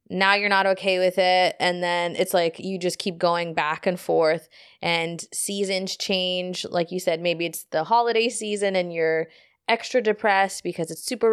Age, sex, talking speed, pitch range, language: 20-39, female, 185 wpm, 175-210 Hz, English